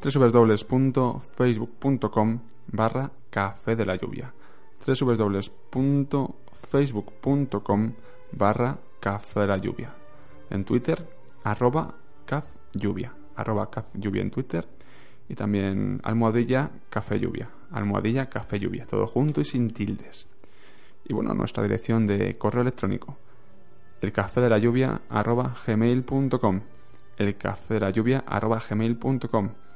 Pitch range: 100-130 Hz